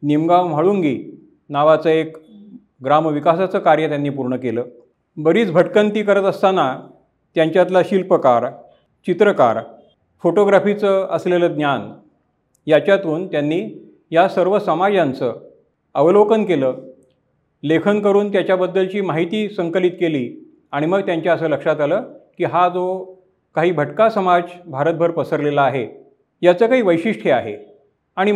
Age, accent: 40-59, native